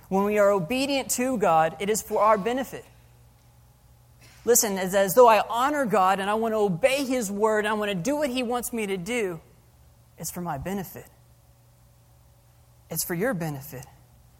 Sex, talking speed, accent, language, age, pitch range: male, 185 wpm, American, English, 20-39, 150-225 Hz